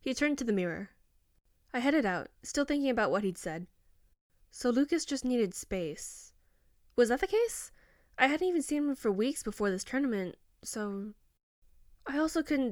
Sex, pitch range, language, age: female, 180-225 Hz, English, 10-29